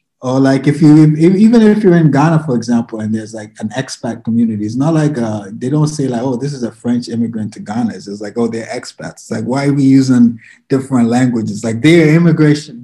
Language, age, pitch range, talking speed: English, 20-39, 115-150 Hz, 235 wpm